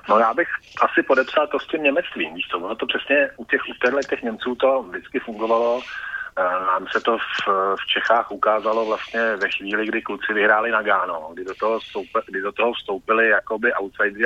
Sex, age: male, 30-49